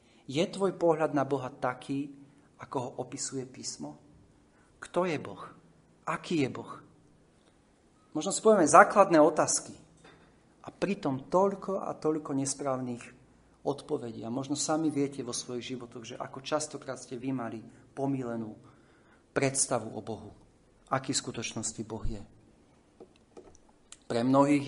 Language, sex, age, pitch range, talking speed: Slovak, male, 40-59, 125-155 Hz, 120 wpm